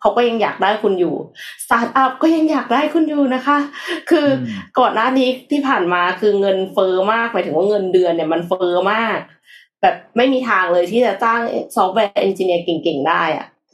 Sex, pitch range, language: female, 185-245 Hz, Thai